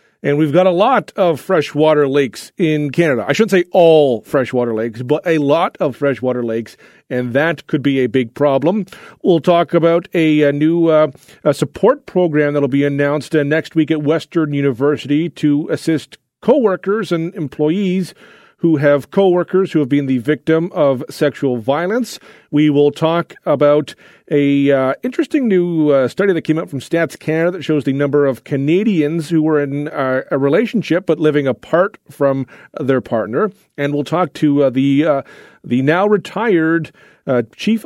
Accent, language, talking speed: American, English, 175 wpm